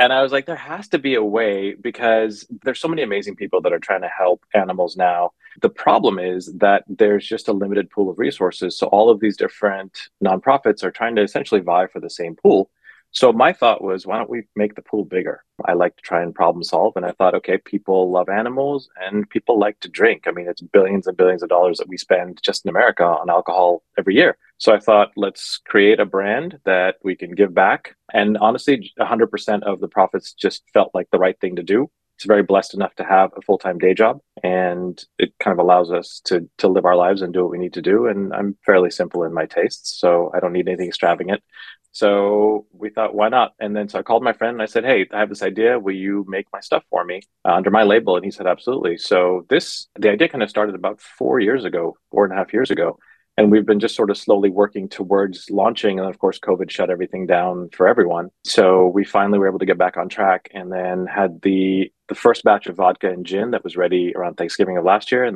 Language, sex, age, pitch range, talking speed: English, male, 30-49, 90-105 Hz, 245 wpm